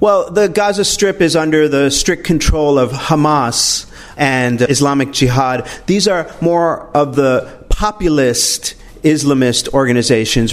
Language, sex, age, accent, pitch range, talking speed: English, male, 40-59, American, 130-160 Hz, 125 wpm